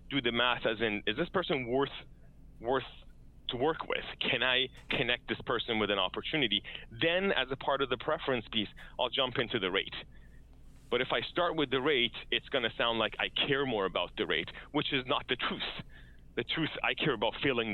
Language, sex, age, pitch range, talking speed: English, male, 30-49, 110-145 Hz, 210 wpm